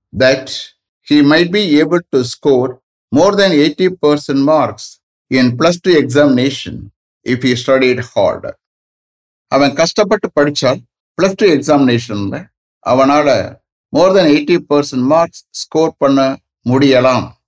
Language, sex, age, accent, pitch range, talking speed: English, male, 60-79, Indian, 115-155 Hz, 115 wpm